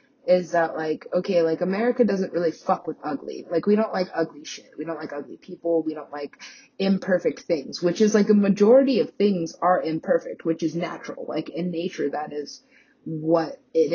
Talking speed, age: 200 wpm, 30-49